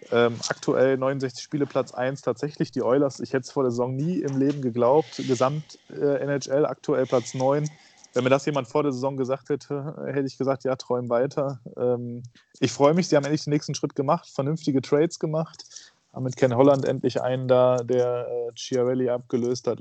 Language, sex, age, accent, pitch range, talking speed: German, male, 20-39, German, 125-145 Hz, 200 wpm